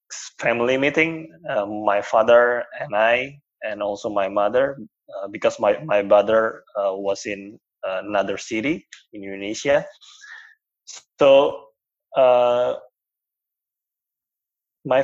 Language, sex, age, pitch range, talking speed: English, male, 20-39, 115-175 Hz, 105 wpm